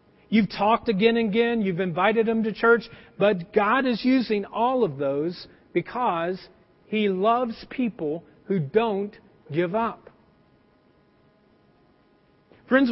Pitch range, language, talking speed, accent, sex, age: 205-265 Hz, English, 120 wpm, American, male, 40-59